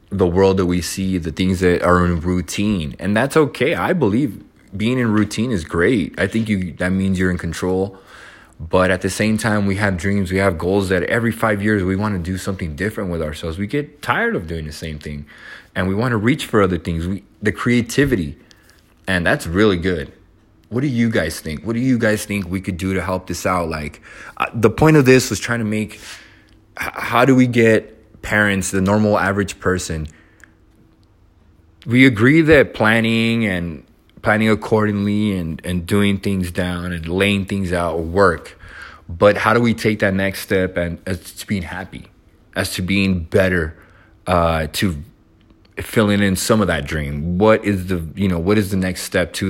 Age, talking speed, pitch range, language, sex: 20-39, 200 wpm, 90-110 Hz, English, male